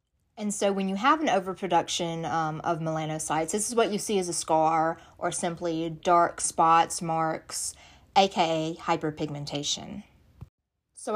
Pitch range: 160-185 Hz